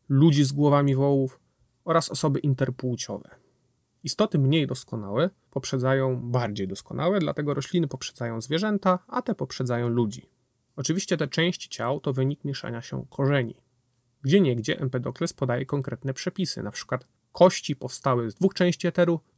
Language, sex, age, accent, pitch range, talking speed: Polish, male, 30-49, native, 125-165 Hz, 135 wpm